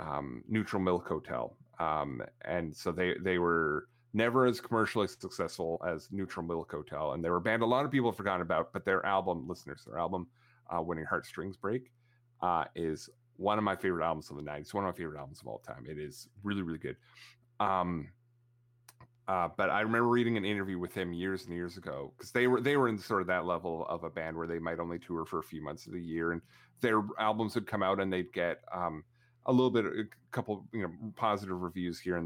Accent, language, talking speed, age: American, English, 225 wpm, 30-49